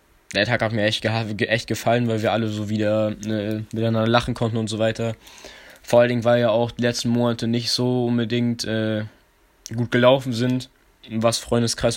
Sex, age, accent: male, 20-39, German